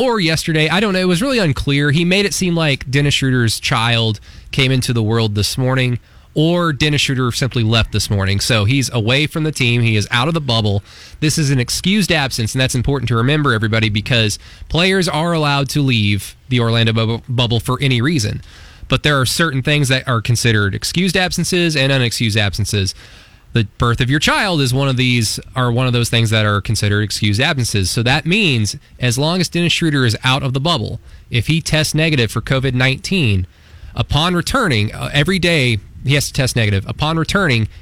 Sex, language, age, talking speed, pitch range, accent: male, English, 20-39, 205 wpm, 110-150 Hz, American